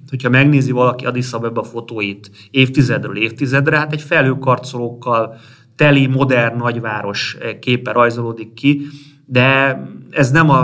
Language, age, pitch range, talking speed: Hungarian, 30-49, 115-140 Hz, 130 wpm